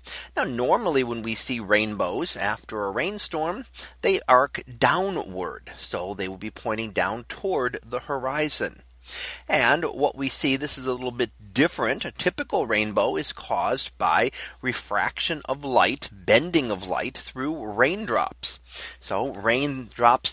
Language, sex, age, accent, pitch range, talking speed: English, male, 30-49, American, 105-145 Hz, 140 wpm